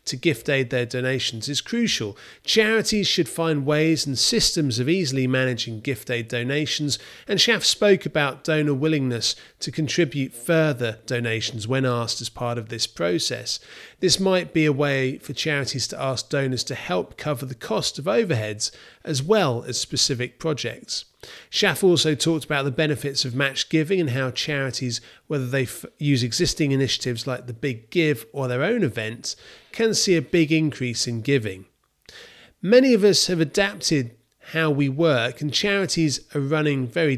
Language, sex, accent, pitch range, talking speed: English, male, British, 125-160 Hz, 165 wpm